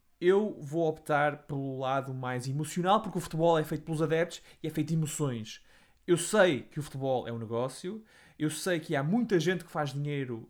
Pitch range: 140-175 Hz